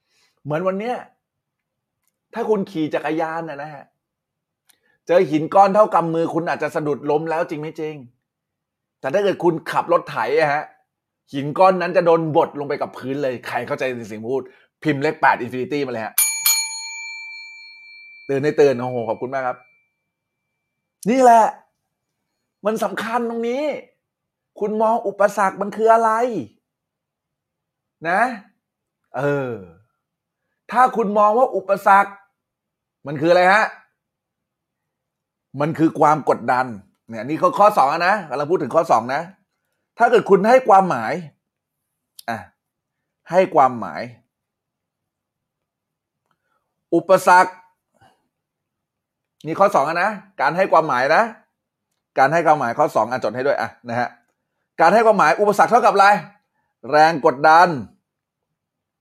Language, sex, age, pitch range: Thai, male, 20-39, 150-210 Hz